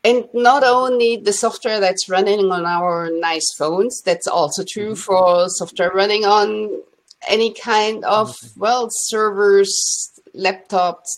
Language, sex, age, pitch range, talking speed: English, female, 50-69, 175-225 Hz, 130 wpm